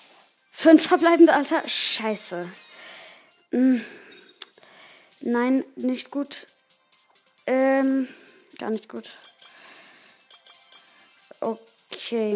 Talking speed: 65 wpm